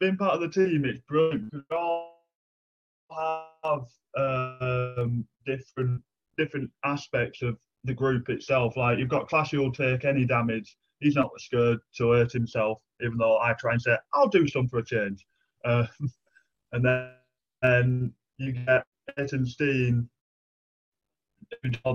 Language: English